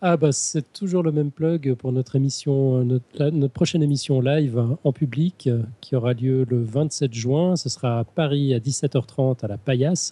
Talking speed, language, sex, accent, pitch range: 190 wpm, French, male, French, 125-145 Hz